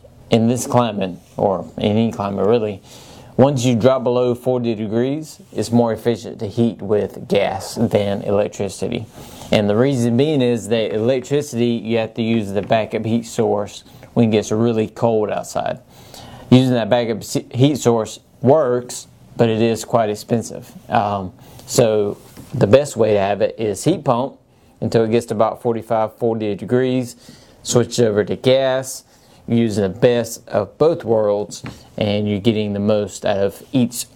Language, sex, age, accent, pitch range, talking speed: English, male, 30-49, American, 105-125 Hz, 160 wpm